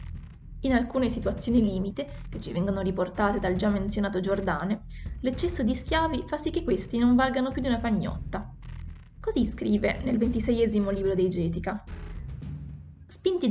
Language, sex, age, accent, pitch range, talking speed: Italian, female, 20-39, native, 195-245 Hz, 145 wpm